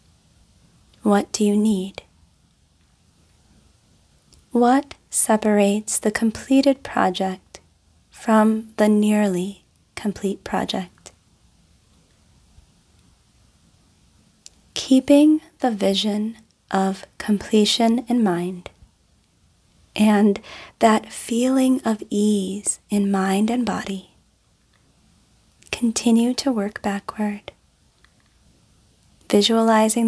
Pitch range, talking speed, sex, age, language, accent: 195-225 Hz, 70 wpm, female, 30-49, English, American